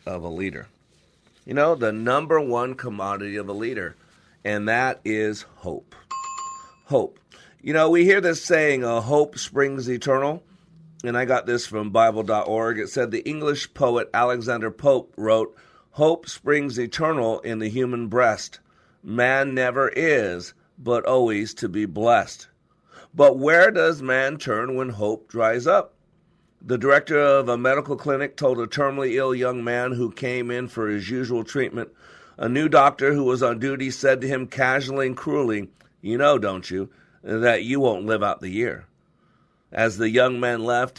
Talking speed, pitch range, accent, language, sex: 165 wpm, 110-135 Hz, American, English, male